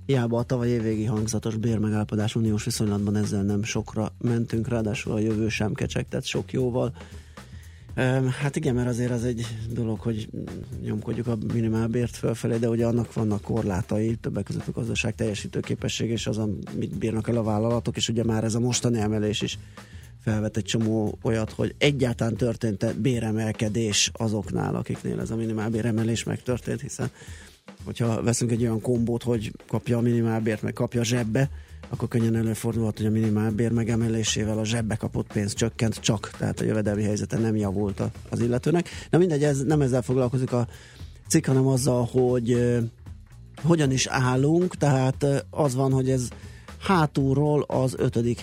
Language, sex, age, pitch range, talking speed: Hungarian, male, 30-49, 110-125 Hz, 165 wpm